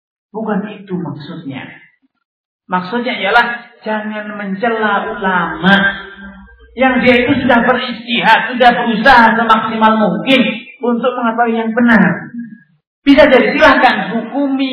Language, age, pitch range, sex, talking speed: Malay, 40-59, 180-240 Hz, male, 100 wpm